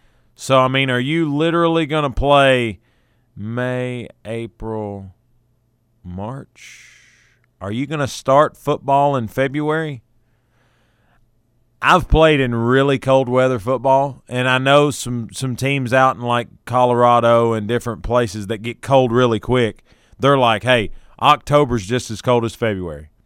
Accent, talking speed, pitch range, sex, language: American, 140 wpm, 115-140 Hz, male, English